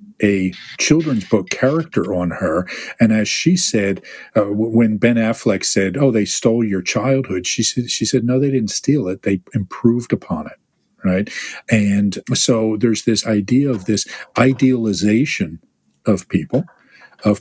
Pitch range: 95-130 Hz